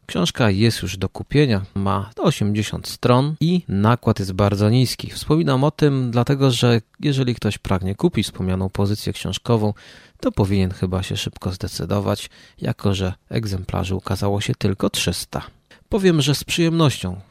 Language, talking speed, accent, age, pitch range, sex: Polish, 145 wpm, native, 30-49, 100-130 Hz, male